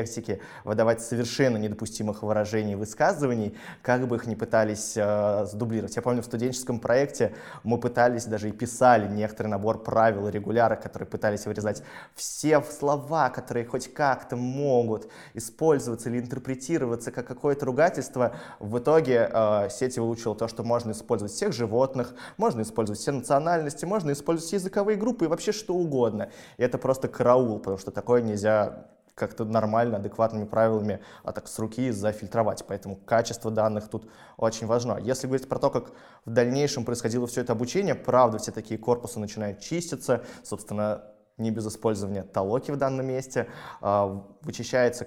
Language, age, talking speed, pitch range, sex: Russian, 20-39, 150 wpm, 105-130 Hz, male